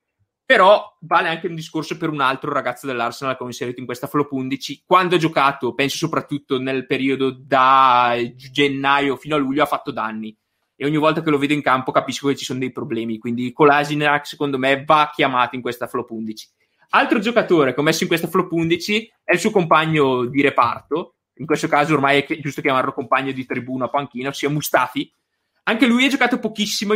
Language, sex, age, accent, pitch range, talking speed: Italian, male, 20-39, native, 135-170 Hz, 200 wpm